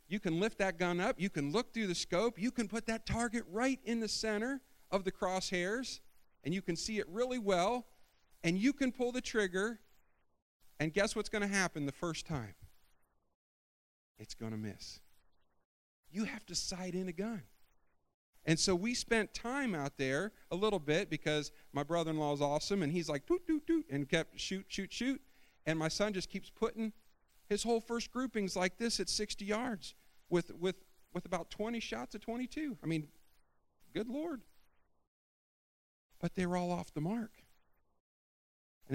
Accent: American